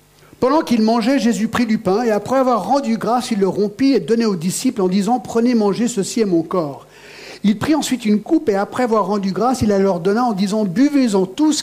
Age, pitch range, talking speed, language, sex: 50-69, 185-250 Hz, 250 wpm, French, male